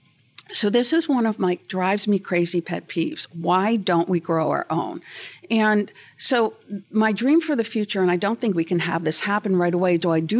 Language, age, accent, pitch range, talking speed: English, 50-69, American, 170-230 Hz, 220 wpm